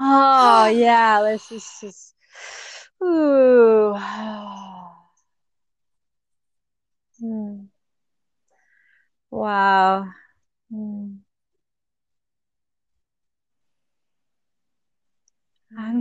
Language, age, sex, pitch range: English, 30-49, female, 210-260 Hz